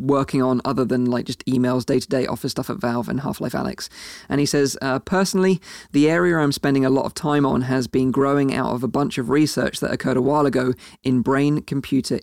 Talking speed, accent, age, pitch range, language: 225 wpm, British, 20-39, 130-150 Hz, English